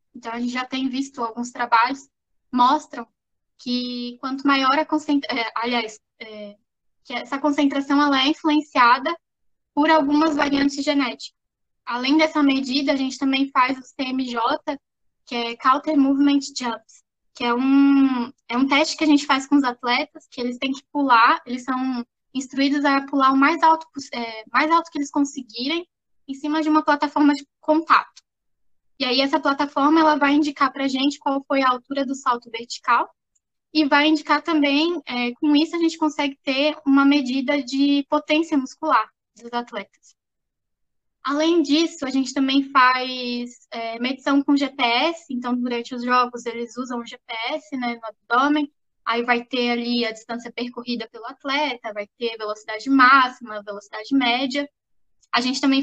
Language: Portuguese